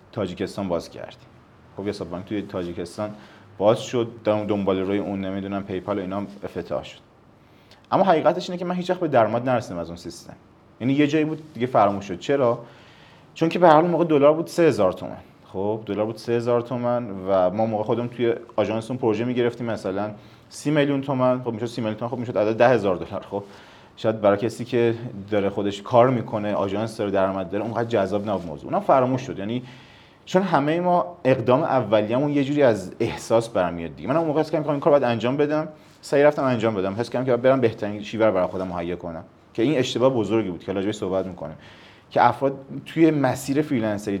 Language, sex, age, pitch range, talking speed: Persian, male, 30-49, 100-130 Hz, 195 wpm